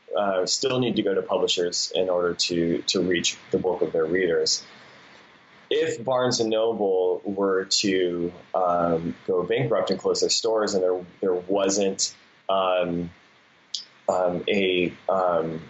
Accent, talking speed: American, 145 wpm